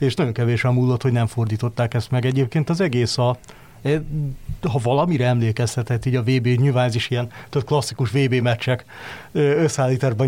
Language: Hungarian